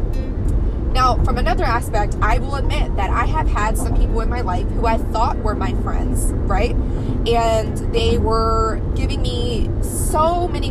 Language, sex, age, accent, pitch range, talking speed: English, female, 20-39, American, 90-110 Hz, 170 wpm